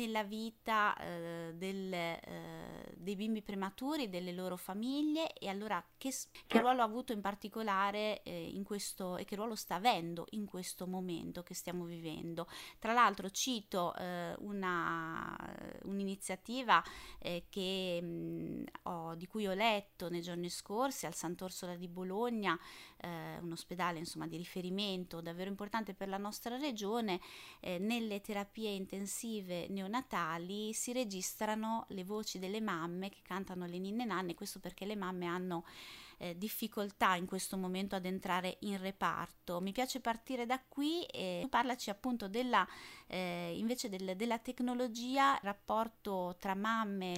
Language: Italian